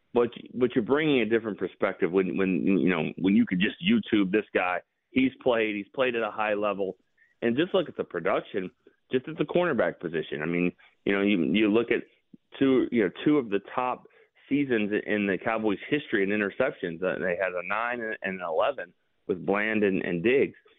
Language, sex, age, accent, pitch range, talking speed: English, male, 30-49, American, 95-125 Hz, 210 wpm